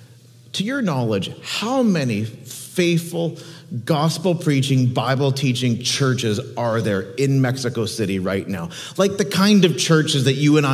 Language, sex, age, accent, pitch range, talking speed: English, male, 40-59, American, 120-150 Hz, 135 wpm